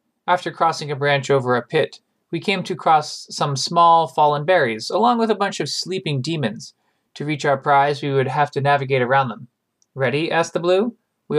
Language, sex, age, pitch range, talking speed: English, male, 20-39, 140-180 Hz, 200 wpm